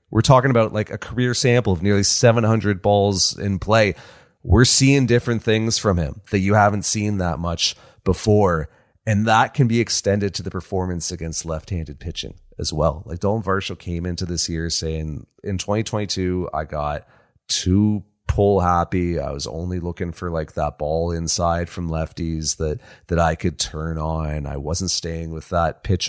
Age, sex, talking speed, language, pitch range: 30-49, male, 175 wpm, English, 80-105 Hz